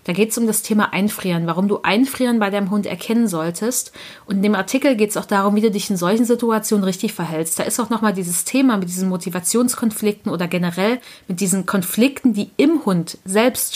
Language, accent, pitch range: German, German, 195-250 Hz